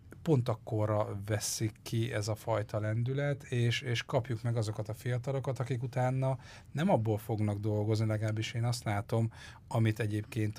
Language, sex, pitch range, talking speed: Hungarian, male, 105-120 Hz, 155 wpm